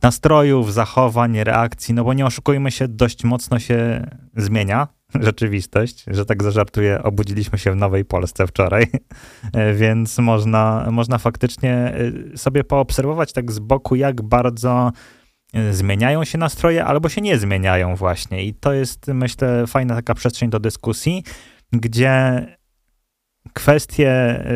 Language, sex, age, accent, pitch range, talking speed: Polish, male, 20-39, native, 110-130 Hz, 125 wpm